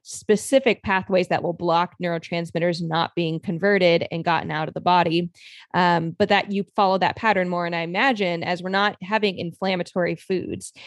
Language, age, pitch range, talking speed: English, 20-39, 175-205 Hz, 175 wpm